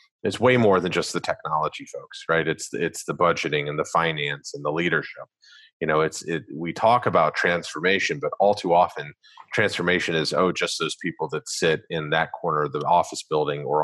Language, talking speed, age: English, 205 wpm, 30-49